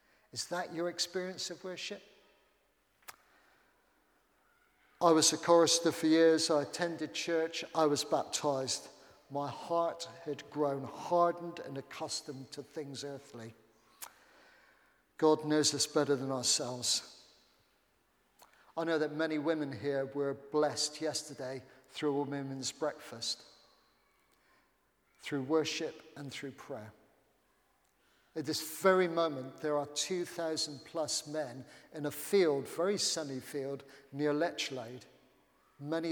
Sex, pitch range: male, 140-165 Hz